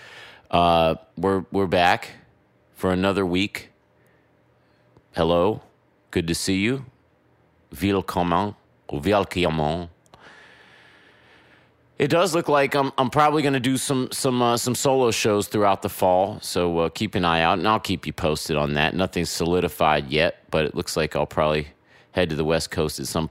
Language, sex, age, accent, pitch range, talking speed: English, male, 30-49, American, 80-100 Hz, 155 wpm